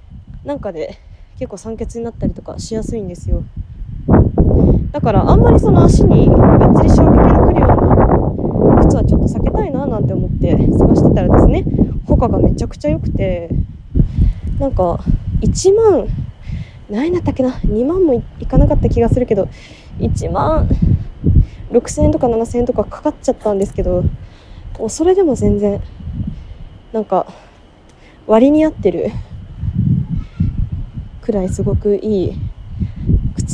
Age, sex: 20-39, female